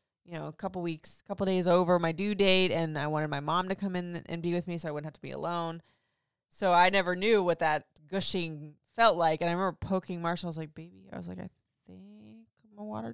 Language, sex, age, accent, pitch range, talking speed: English, female, 20-39, American, 155-185 Hz, 255 wpm